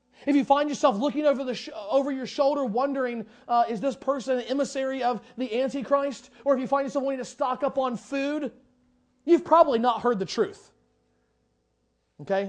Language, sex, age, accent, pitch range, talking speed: English, male, 30-49, American, 160-250 Hz, 185 wpm